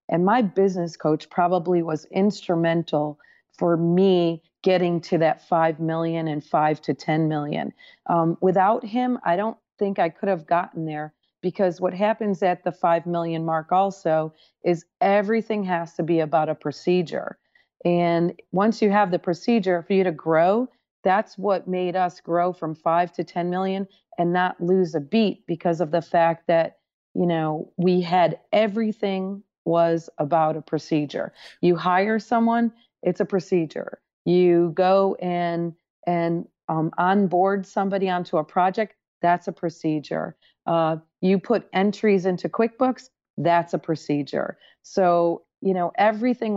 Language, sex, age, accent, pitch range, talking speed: English, female, 40-59, American, 165-195 Hz, 150 wpm